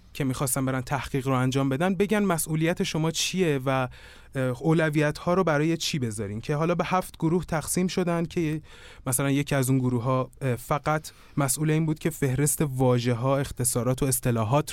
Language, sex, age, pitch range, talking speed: Persian, male, 20-39, 125-165 Hz, 175 wpm